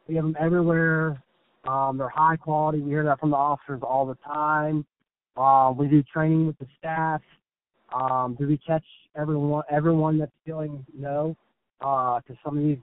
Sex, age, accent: male, 20-39, American